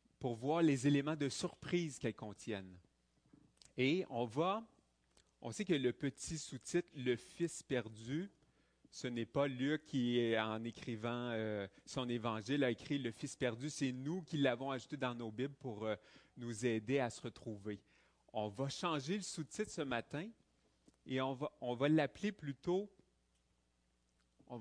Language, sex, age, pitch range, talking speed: French, male, 30-49, 110-150 Hz, 170 wpm